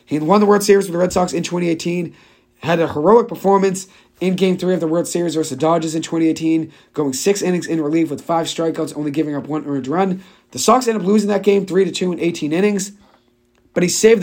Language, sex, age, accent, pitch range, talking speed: English, male, 40-59, American, 150-190 Hz, 240 wpm